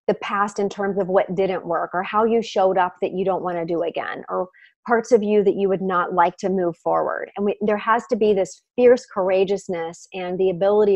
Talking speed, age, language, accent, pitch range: 235 wpm, 30-49, English, American, 190-245 Hz